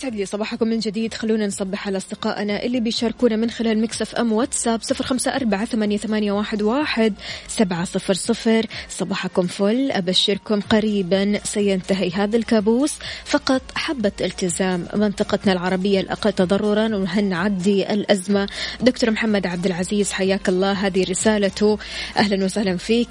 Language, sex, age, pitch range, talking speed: Arabic, female, 20-39, 195-225 Hz, 120 wpm